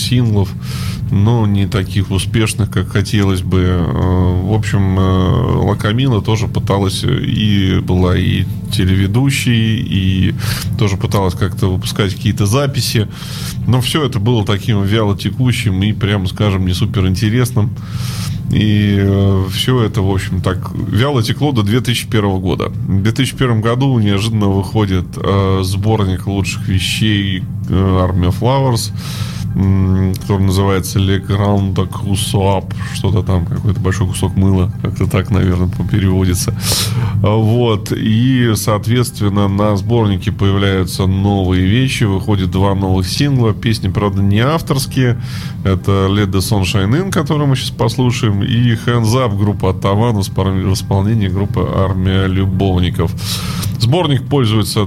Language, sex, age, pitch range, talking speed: Russian, male, 20-39, 95-115 Hz, 115 wpm